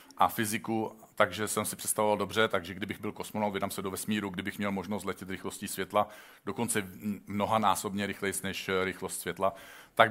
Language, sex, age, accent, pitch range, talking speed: Czech, male, 50-69, native, 105-155 Hz, 170 wpm